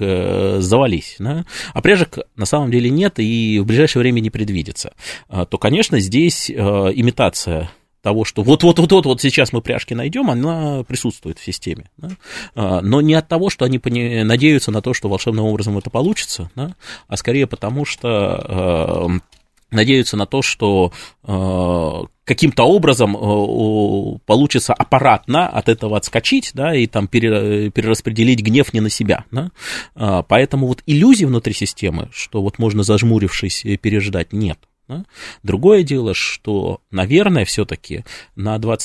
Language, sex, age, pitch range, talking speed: Russian, male, 30-49, 100-130 Hz, 125 wpm